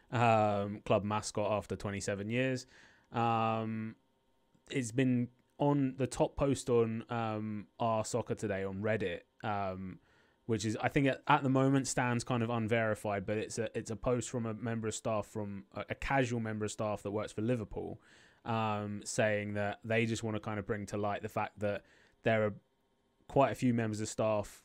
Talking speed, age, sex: 190 wpm, 20-39, male